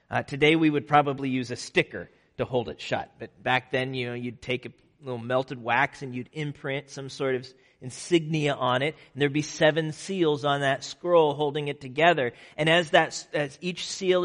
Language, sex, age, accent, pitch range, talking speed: English, male, 40-59, American, 135-160 Hz, 215 wpm